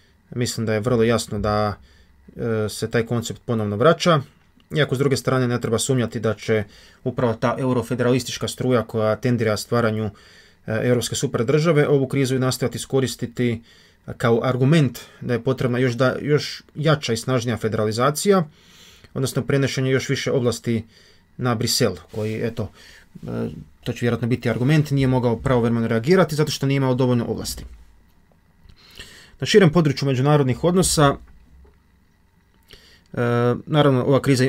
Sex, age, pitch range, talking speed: male, 20-39, 110-135 Hz, 135 wpm